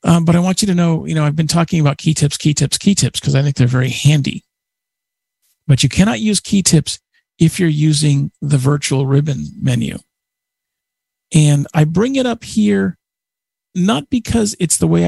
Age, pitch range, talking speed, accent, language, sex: 50-69, 135-170 Hz, 195 wpm, American, English, male